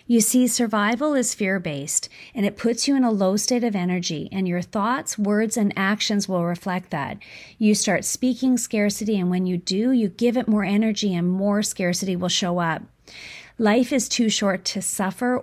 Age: 40-59